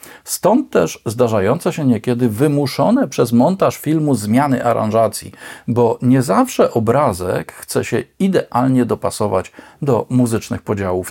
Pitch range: 110-145 Hz